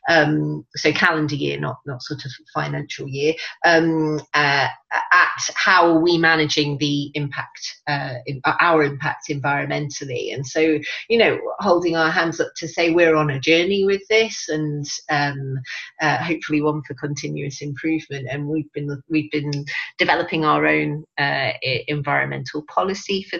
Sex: female